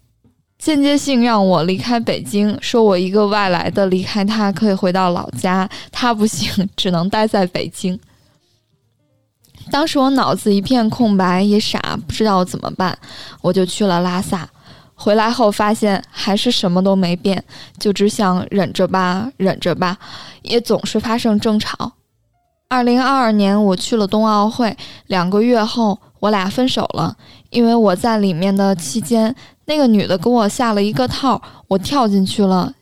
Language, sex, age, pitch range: Chinese, female, 10-29, 185-230 Hz